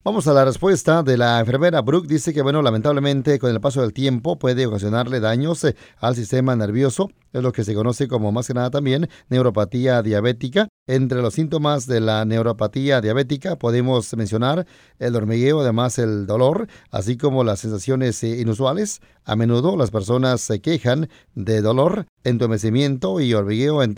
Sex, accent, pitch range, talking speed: male, Mexican, 115-150 Hz, 165 wpm